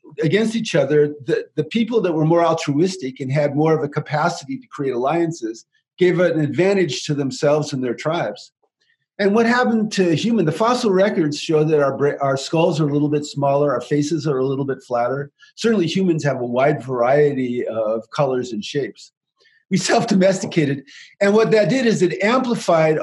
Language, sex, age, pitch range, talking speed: English, male, 40-59, 145-200 Hz, 185 wpm